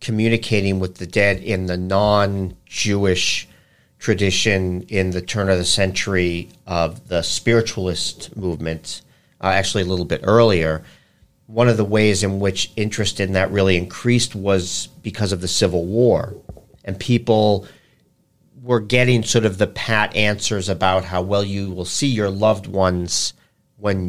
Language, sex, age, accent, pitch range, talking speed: English, male, 50-69, American, 90-110 Hz, 150 wpm